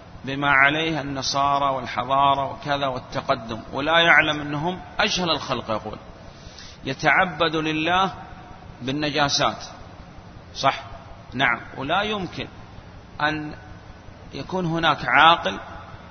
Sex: male